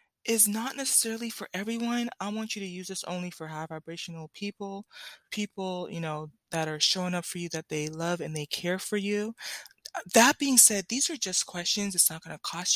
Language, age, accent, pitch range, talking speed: English, 20-39, American, 165-210 Hz, 210 wpm